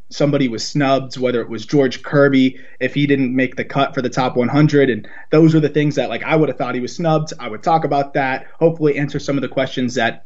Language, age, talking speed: English, 20-39, 255 wpm